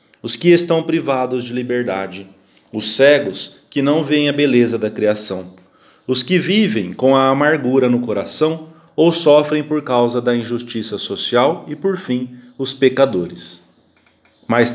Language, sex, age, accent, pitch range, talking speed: English, male, 40-59, Brazilian, 120-155 Hz, 145 wpm